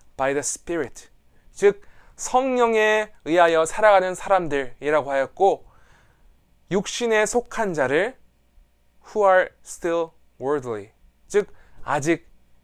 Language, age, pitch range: Korean, 20-39, 150-215 Hz